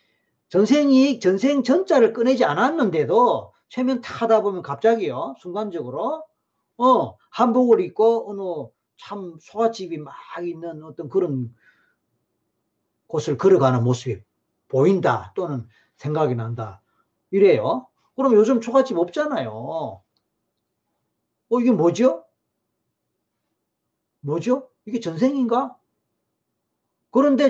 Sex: male